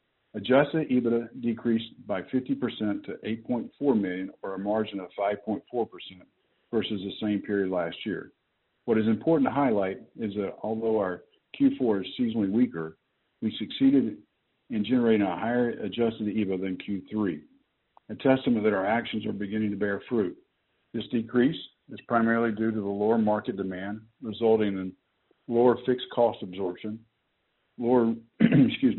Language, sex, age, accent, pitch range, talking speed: English, male, 50-69, American, 100-120 Hz, 145 wpm